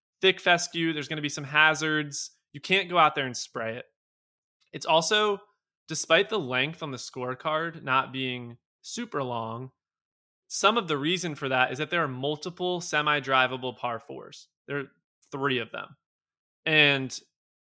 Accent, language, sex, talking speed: American, English, male, 165 wpm